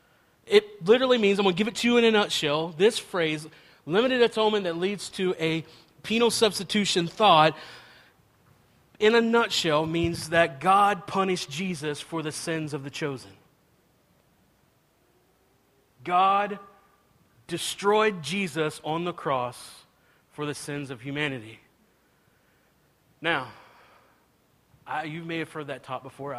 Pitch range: 150-190 Hz